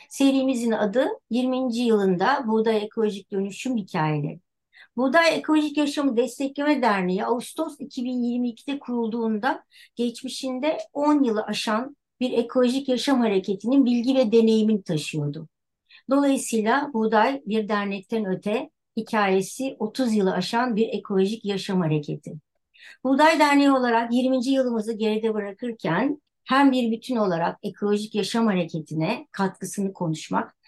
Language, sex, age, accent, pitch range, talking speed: Turkish, male, 60-79, native, 200-255 Hz, 110 wpm